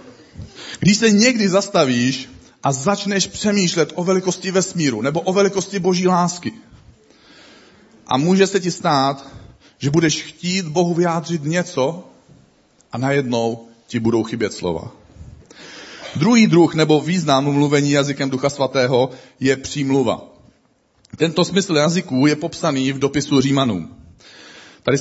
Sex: male